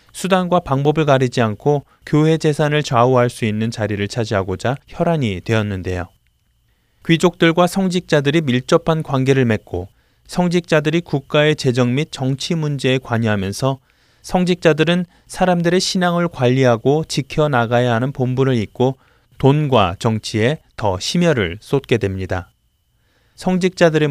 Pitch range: 115-160 Hz